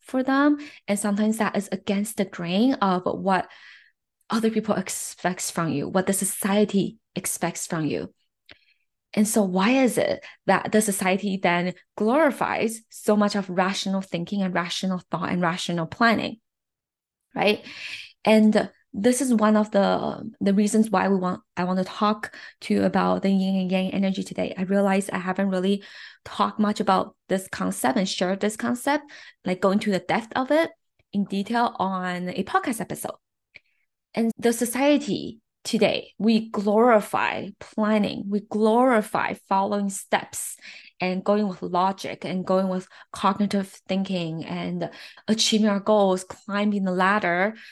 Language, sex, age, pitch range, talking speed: English, female, 20-39, 190-215 Hz, 155 wpm